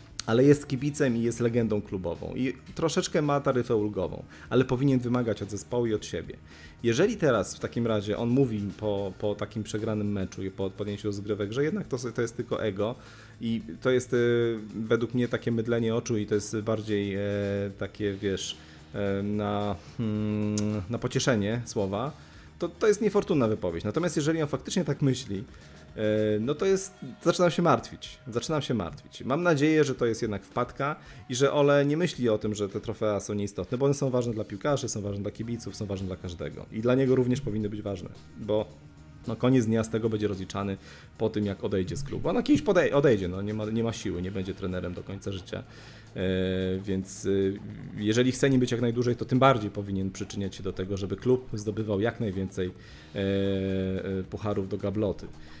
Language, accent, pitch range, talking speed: Polish, native, 100-125 Hz, 195 wpm